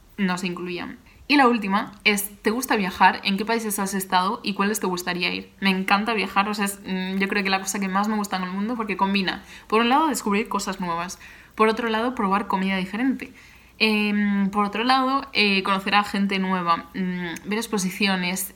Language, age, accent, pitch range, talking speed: Spanish, 20-39, Spanish, 190-220 Hz, 210 wpm